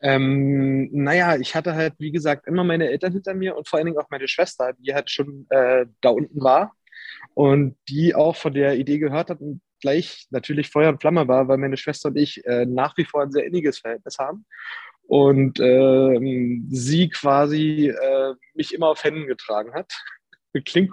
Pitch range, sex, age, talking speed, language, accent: 140-180 Hz, male, 20-39, 195 wpm, German, German